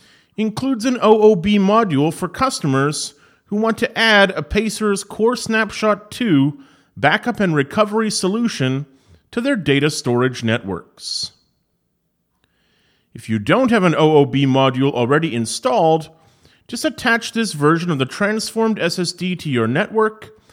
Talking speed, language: 130 wpm, English